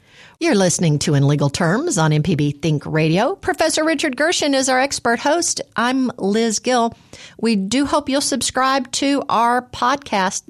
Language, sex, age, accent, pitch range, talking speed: English, female, 50-69, American, 165-240 Hz, 160 wpm